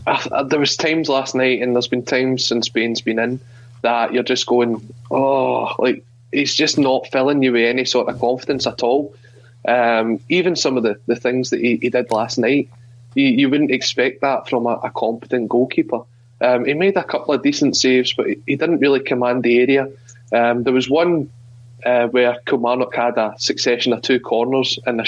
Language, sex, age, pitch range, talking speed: English, male, 20-39, 120-140 Hz, 205 wpm